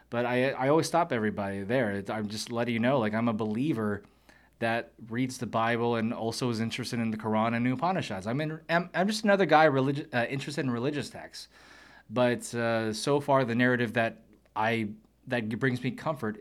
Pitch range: 115-150 Hz